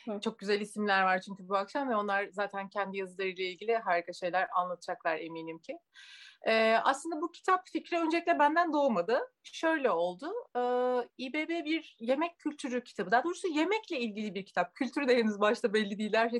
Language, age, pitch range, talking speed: Turkish, 30-49, 205-315 Hz, 170 wpm